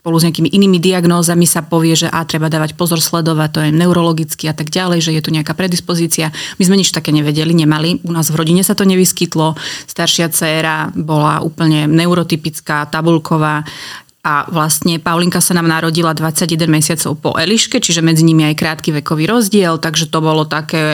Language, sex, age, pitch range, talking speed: Slovak, female, 30-49, 160-190 Hz, 185 wpm